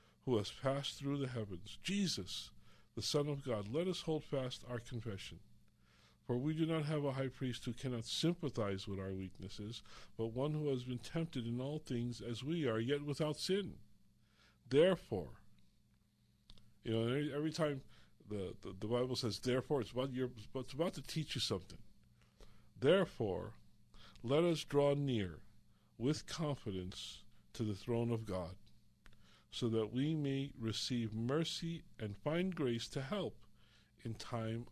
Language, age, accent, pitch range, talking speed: English, 50-69, American, 105-140 Hz, 155 wpm